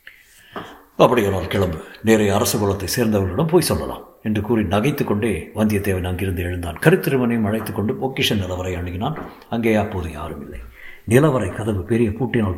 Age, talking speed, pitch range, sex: 60-79, 135 wpm, 95-125 Hz, male